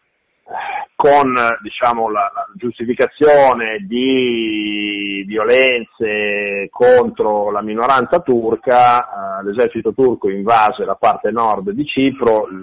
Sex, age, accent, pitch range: male, 40-59, native, 105-135 Hz